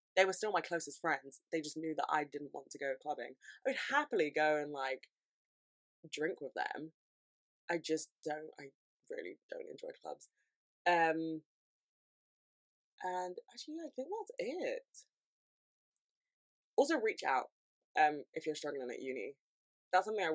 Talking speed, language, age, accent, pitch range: 155 wpm, English, 20-39, British, 145-175 Hz